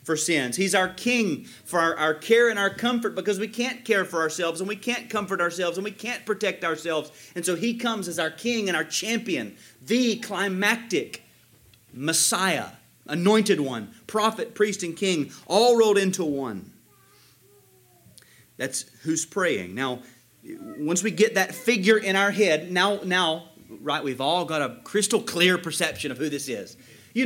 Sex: male